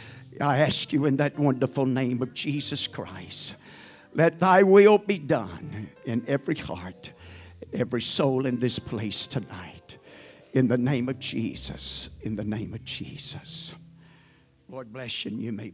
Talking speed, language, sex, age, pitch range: 155 wpm, English, male, 60-79, 105-140 Hz